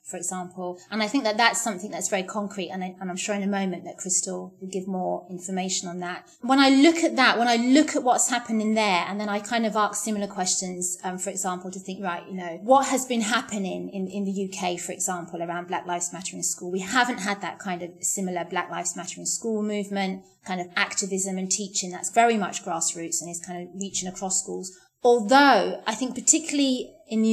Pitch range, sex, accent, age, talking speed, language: 185-215 Hz, female, British, 30-49, 235 wpm, English